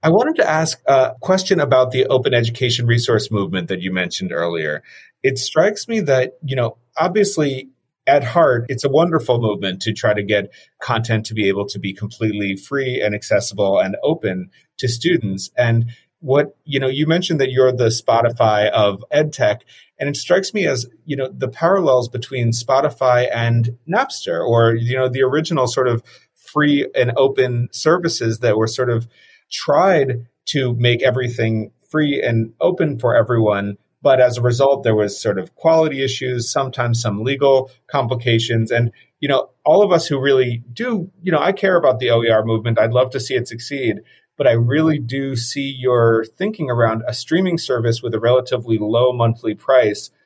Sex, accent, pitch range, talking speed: male, American, 115-140 Hz, 180 wpm